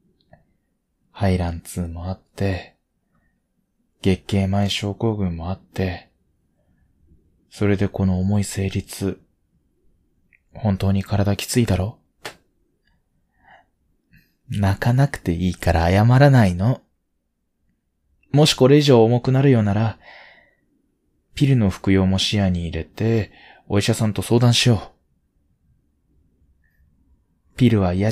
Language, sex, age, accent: Japanese, male, 20-39, native